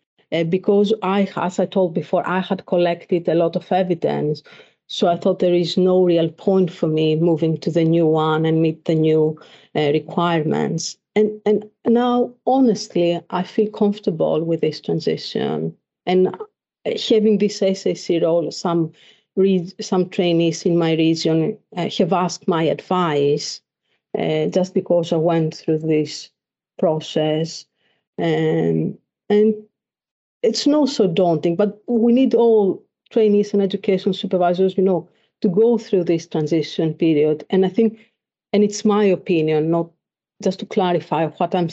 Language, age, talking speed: English, 50-69, 150 wpm